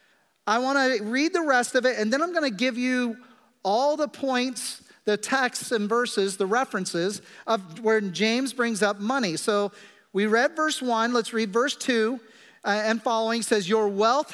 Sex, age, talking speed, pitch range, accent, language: male, 40-59, 175 wpm, 205-260 Hz, American, English